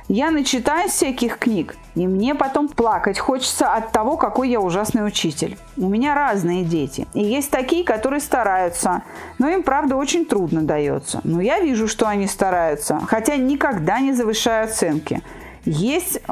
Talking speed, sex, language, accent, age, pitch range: 155 wpm, female, Russian, native, 30-49, 180-255 Hz